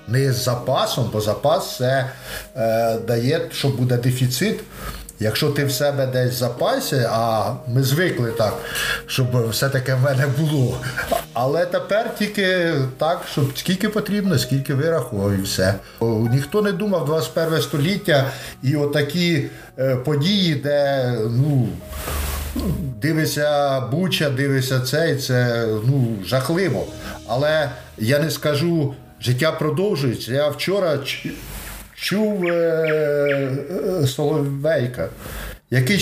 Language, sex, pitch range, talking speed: Ukrainian, male, 130-180 Hz, 120 wpm